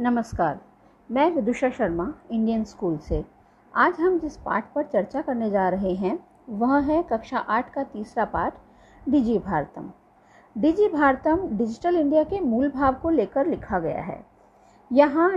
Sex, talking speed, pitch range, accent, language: female, 150 wpm, 225-310 Hz, native, Hindi